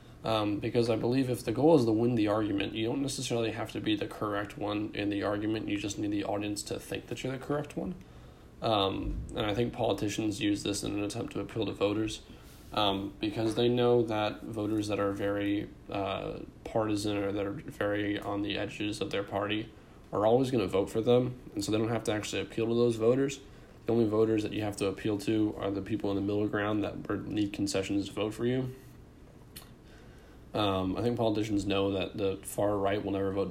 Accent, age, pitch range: American, 20-39, 100-110 Hz